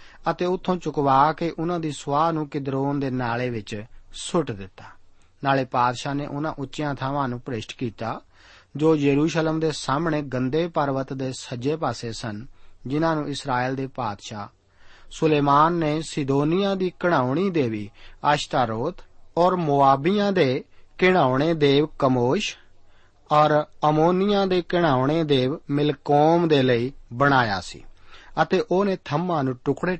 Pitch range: 125-160 Hz